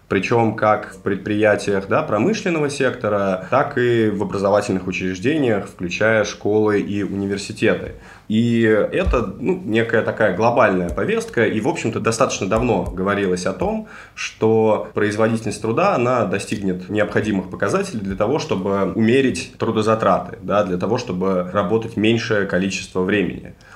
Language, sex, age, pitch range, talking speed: Russian, male, 20-39, 95-110 Hz, 120 wpm